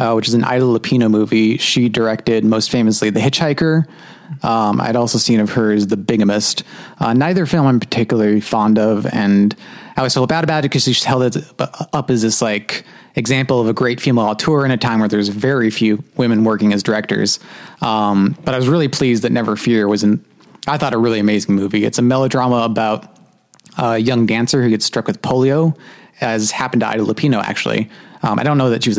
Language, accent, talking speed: English, American, 215 wpm